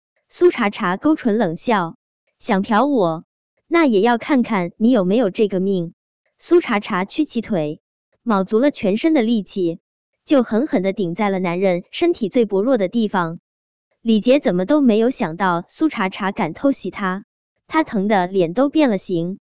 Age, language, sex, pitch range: 20-39, Chinese, male, 185-270 Hz